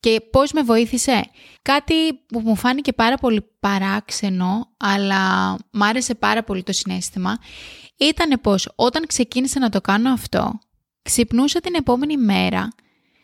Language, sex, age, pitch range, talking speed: Greek, female, 20-39, 205-255 Hz, 135 wpm